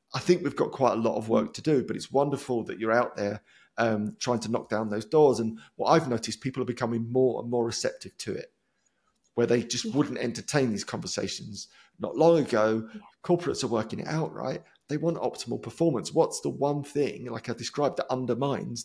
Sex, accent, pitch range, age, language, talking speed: male, British, 120-155 Hz, 30-49, English, 215 wpm